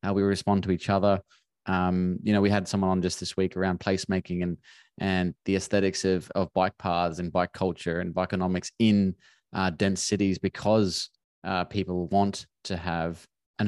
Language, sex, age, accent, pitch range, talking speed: English, male, 20-39, Australian, 90-100 Hz, 190 wpm